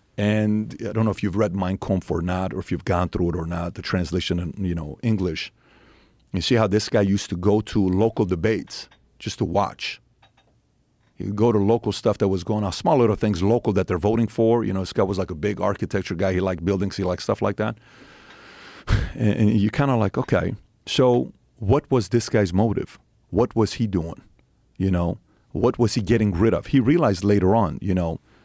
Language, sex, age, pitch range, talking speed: English, male, 40-59, 95-115 Hz, 220 wpm